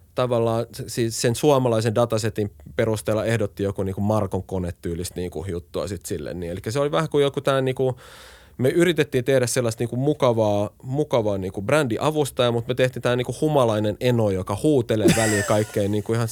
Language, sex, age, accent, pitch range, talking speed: Finnish, male, 30-49, native, 105-130 Hz, 170 wpm